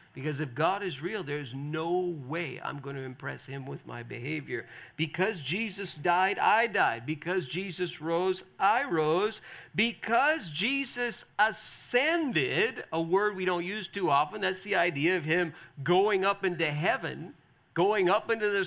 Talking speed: 160 wpm